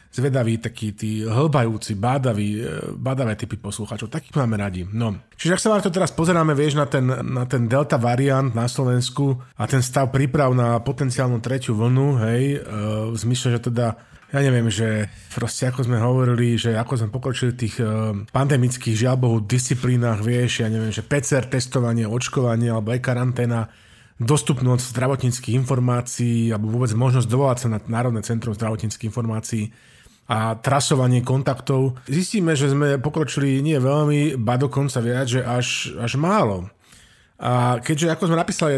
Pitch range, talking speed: 115-140 Hz, 155 wpm